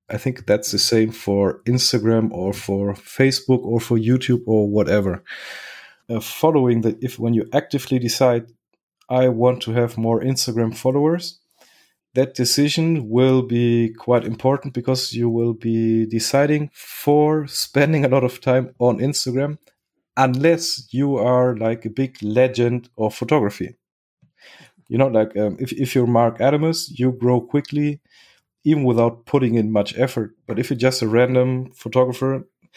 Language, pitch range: English, 115-135 Hz